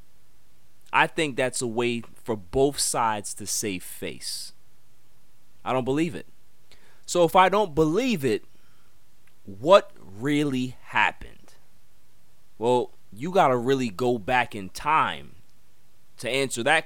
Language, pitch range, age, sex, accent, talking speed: English, 110-150 Hz, 30-49, male, American, 130 wpm